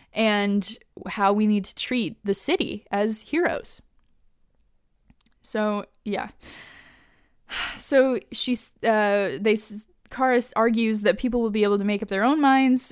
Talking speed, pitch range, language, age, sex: 140 wpm, 205-275 Hz, English, 10-29, female